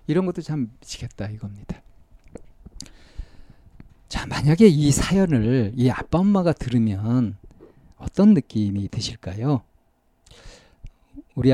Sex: male